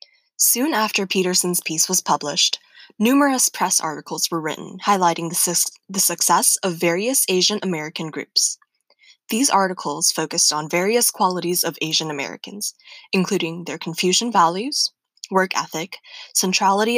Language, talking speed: English, 125 wpm